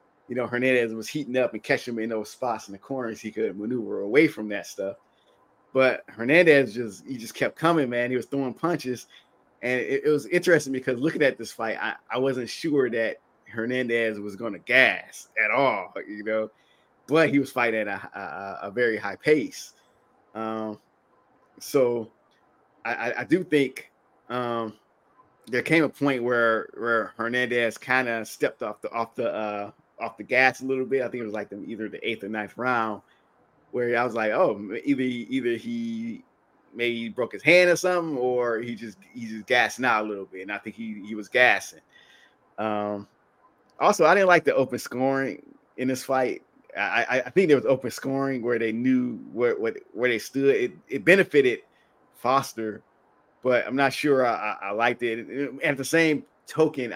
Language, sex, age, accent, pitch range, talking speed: English, male, 20-39, American, 110-140 Hz, 195 wpm